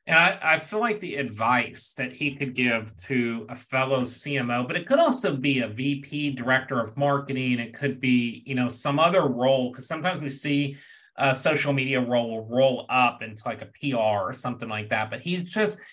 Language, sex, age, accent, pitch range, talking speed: English, male, 30-49, American, 125-150 Hz, 205 wpm